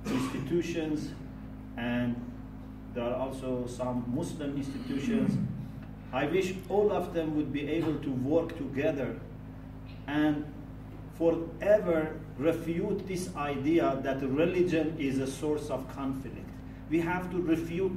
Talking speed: 115 wpm